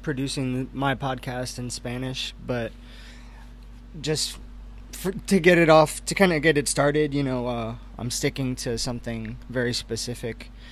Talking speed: 150 wpm